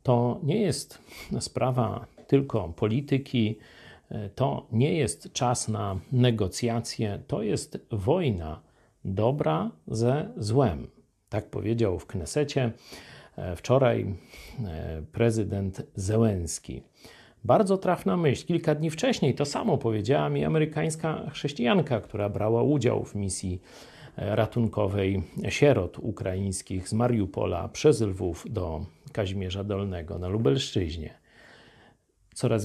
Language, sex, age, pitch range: Polish, male, 50-69, 105-150 Hz